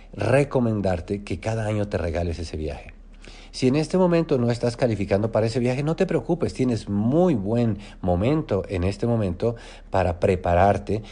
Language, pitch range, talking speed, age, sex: English, 85-105 Hz, 160 wpm, 40-59, male